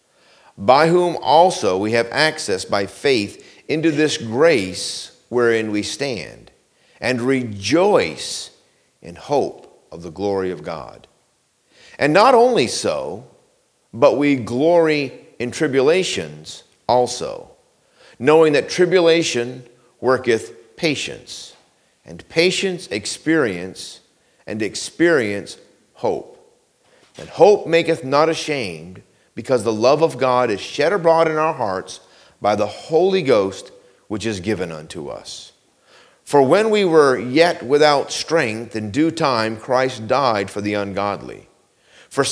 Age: 50-69